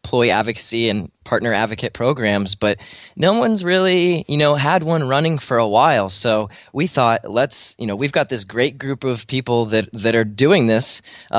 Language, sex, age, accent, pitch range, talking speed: English, male, 20-39, American, 105-140 Hz, 195 wpm